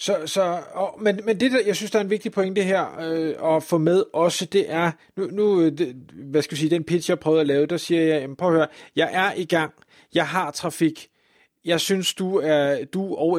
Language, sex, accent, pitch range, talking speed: Danish, male, native, 160-200 Hz, 245 wpm